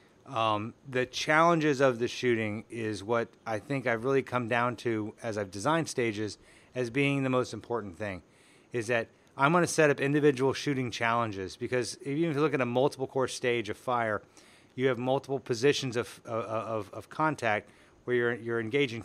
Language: English